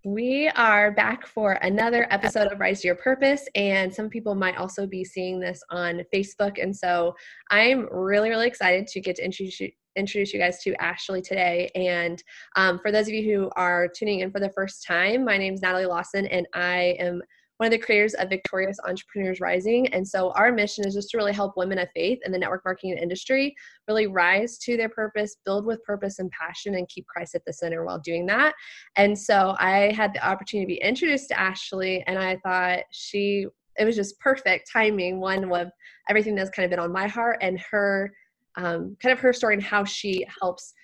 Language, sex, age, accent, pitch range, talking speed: English, female, 20-39, American, 185-215 Hz, 210 wpm